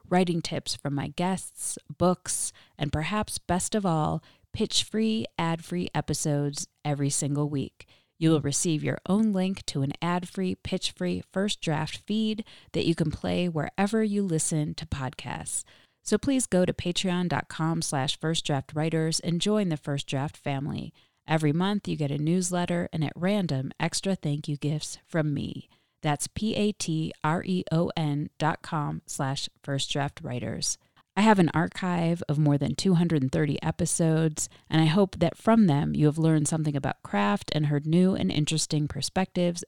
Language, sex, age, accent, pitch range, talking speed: English, female, 30-49, American, 145-185 Hz, 155 wpm